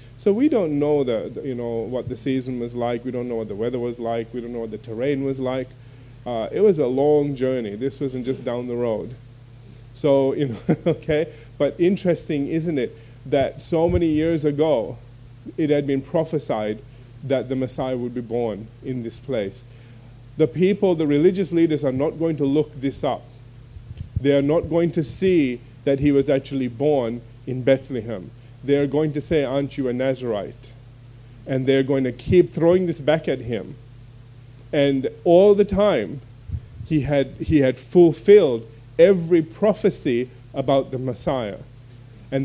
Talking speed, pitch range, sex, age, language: 175 wpm, 120-155 Hz, male, 30-49, English